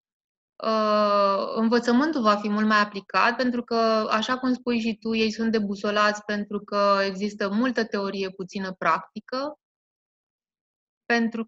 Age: 20-39